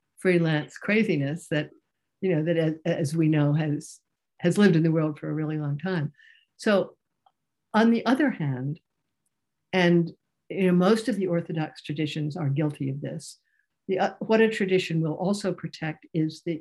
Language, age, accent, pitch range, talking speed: English, 60-79, American, 150-175 Hz, 170 wpm